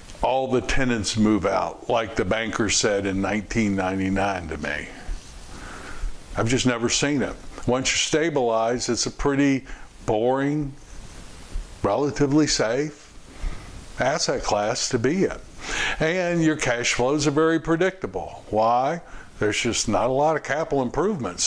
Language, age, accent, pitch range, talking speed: English, 60-79, American, 110-145 Hz, 135 wpm